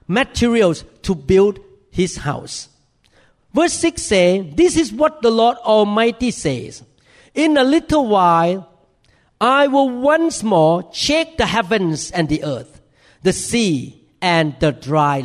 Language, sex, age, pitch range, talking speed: English, male, 50-69, 150-205 Hz, 135 wpm